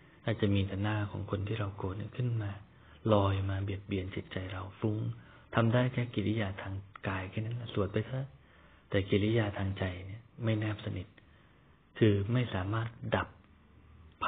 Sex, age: male, 20-39